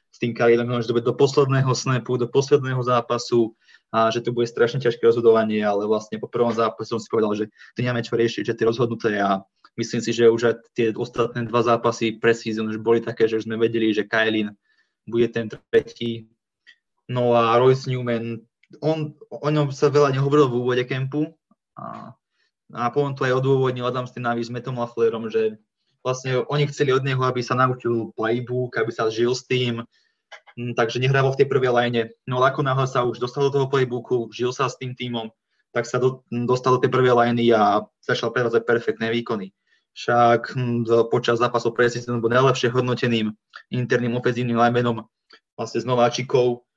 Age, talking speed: 20-39, 180 wpm